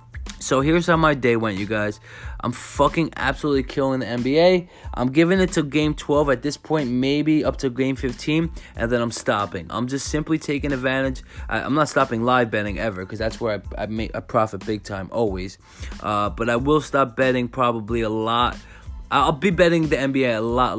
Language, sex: English, male